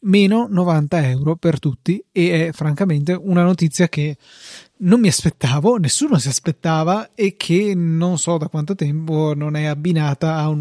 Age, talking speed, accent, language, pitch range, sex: 20-39, 165 wpm, native, Italian, 150-170 Hz, male